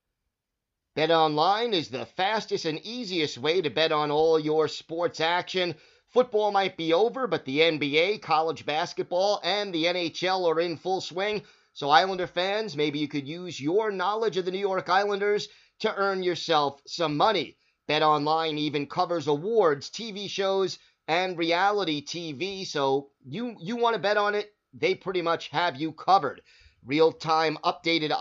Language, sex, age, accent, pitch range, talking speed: English, male, 30-49, American, 150-190 Hz, 165 wpm